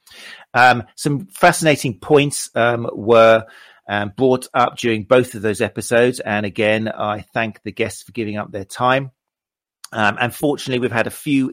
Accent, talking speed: British, 165 wpm